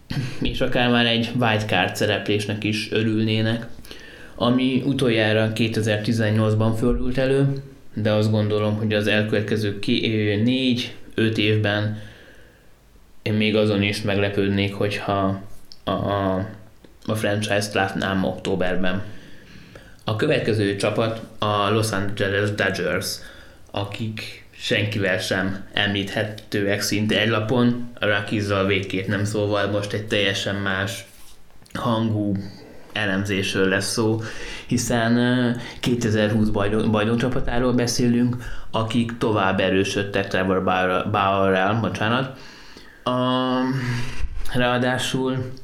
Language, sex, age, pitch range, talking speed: Hungarian, male, 20-39, 100-120 Hz, 95 wpm